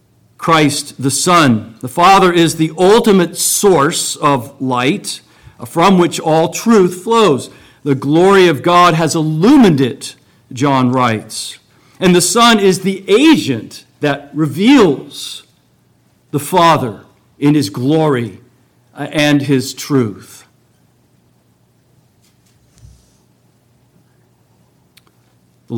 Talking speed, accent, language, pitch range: 100 wpm, American, English, 120-160 Hz